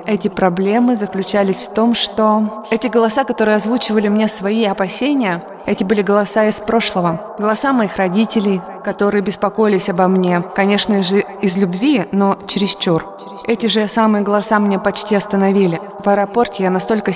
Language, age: Russian, 20-39